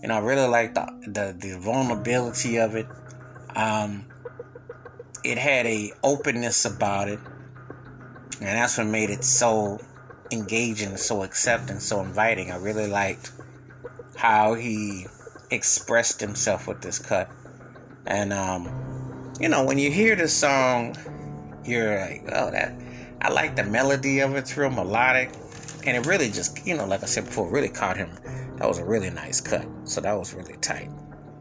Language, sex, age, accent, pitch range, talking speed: English, male, 30-49, American, 105-130 Hz, 160 wpm